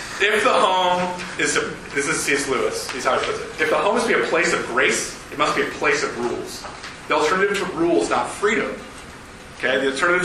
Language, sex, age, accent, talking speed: English, male, 30-49, American, 245 wpm